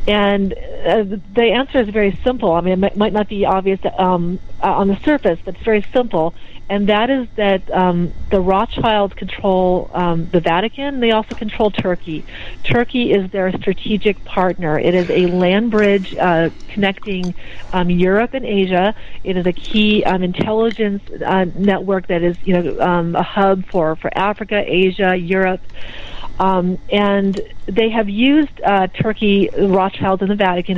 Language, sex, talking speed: English, female, 165 wpm